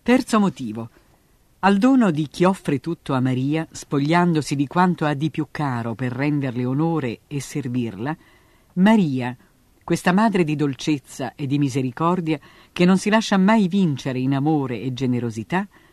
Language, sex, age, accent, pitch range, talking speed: Italian, female, 50-69, native, 130-185 Hz, 150 wpm